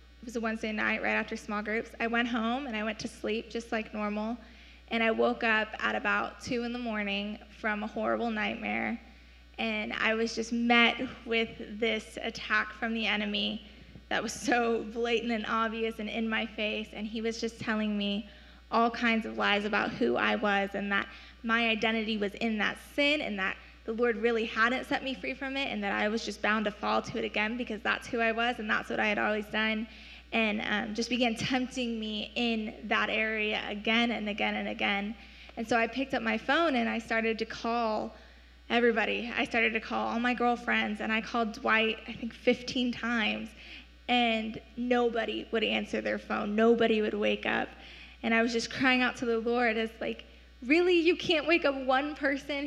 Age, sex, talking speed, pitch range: 20-39, female, 205 wpm, 215-240 Hz